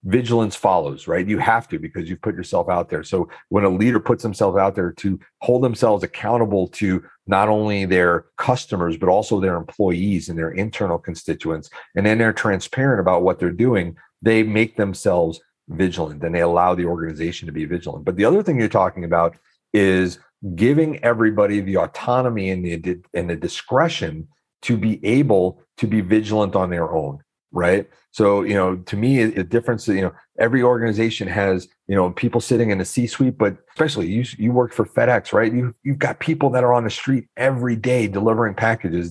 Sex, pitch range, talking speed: male, 90-120 Hz, 190 wpm